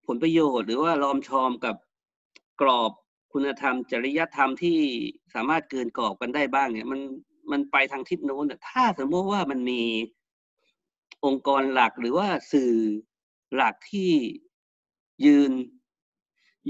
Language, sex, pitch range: Thai, male, 125-190 Hz